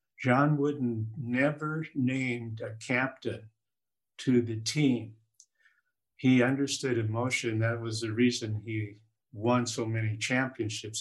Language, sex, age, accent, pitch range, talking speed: English, male, 50-69, American, 110-125 Hz, 115 wpm